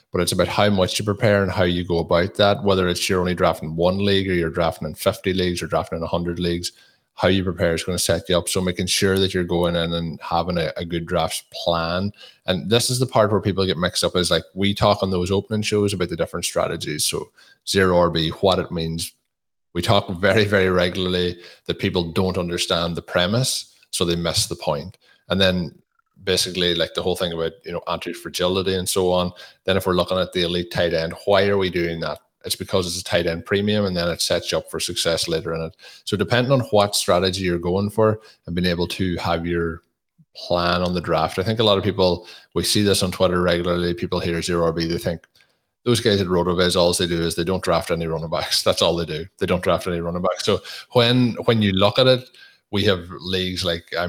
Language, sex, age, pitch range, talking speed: English, male, 20-39, 85-100 Hz, 240 wpm